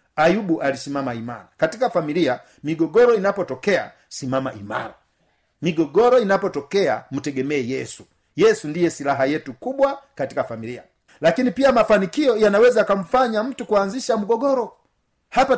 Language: Swahili